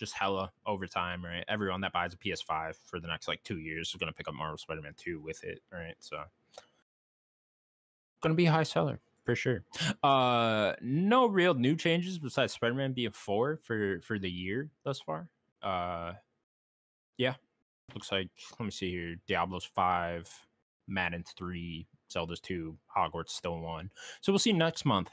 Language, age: English, 20-39